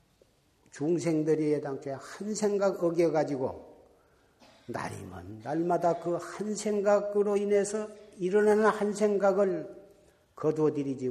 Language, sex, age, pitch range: Korean, male, 50-69, 140-185 Hz